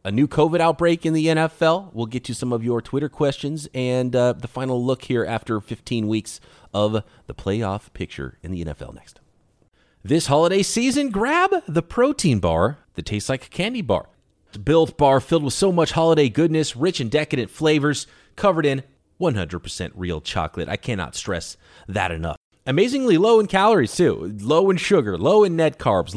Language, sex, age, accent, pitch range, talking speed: English, male, 30-49, American, 105-170 Hz, 185 wpm